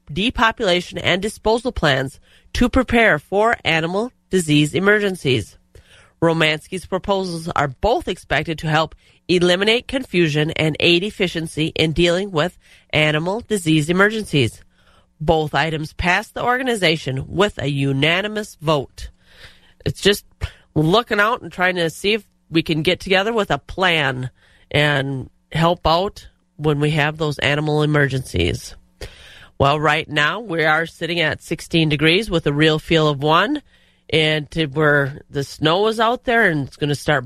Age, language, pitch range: 30-49, English, 145-185 Hz